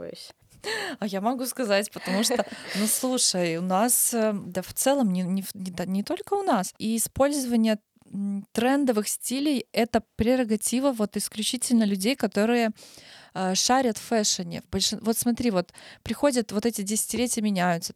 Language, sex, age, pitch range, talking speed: Russian, female, 20-39, 195-235 Hz, 130 wpm